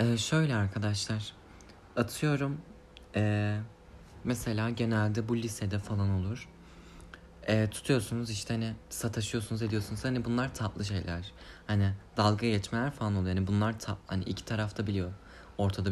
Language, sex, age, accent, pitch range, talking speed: Turkish, male, 30-49, native, 95-115 Hz, 130 wpm